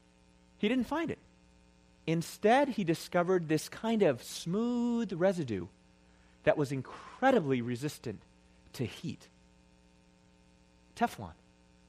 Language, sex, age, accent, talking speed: English, male, 30-49, American, 95 wpm